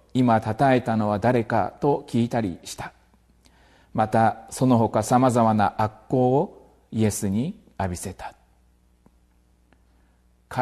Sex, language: male, Japanese